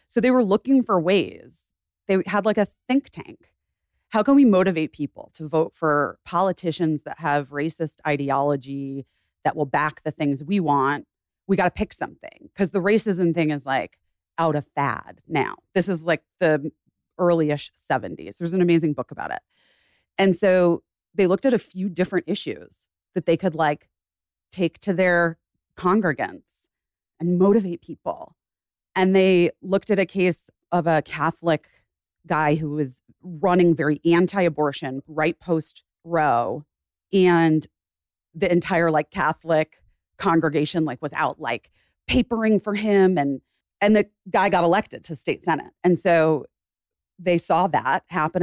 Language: English